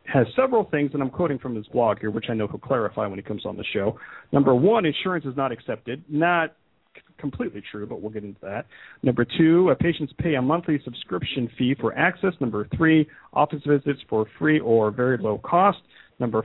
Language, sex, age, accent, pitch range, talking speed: English, male, 40-59, American, 110-150 Hz, 210 wpm